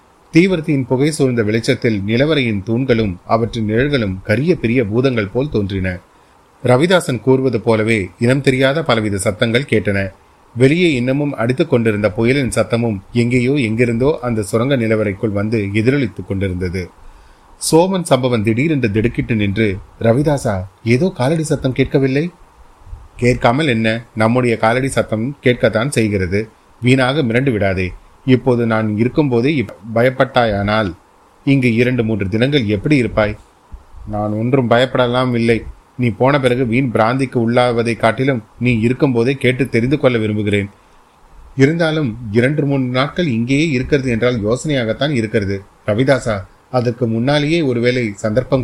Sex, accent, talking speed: male, native, 120 wpm